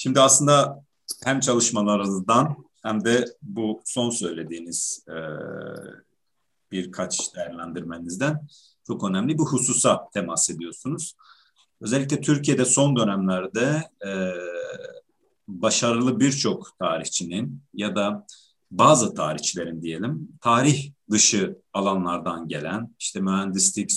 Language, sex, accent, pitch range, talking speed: Turkish, male, native, 95-135 Hz, 90 wpm